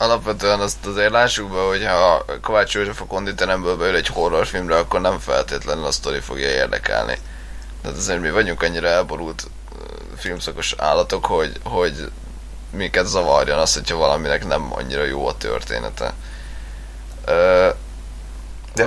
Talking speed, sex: 135 wpm, male